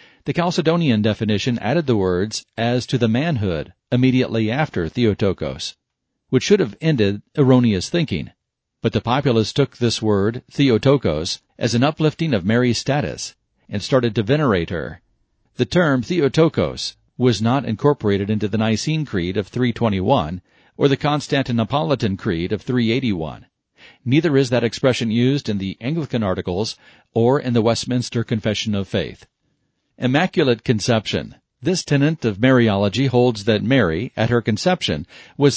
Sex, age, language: male, 40-59, English